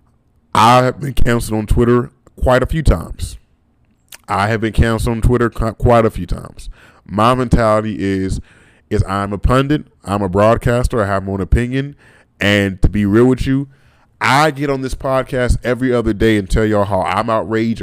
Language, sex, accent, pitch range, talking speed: English, male, American, 105-140 Hz, 185 wpm